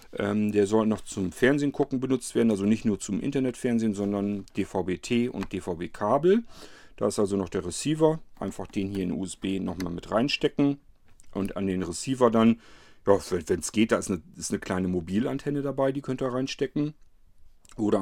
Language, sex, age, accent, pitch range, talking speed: German, male, 40-59, German, 95-115 Hz, 175 wpm